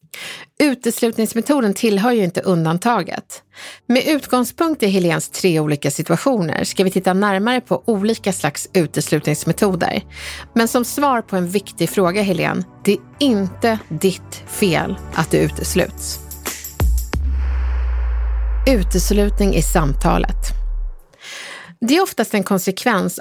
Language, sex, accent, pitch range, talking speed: Swedish, female, native, 175-255 Hz, 115 wpm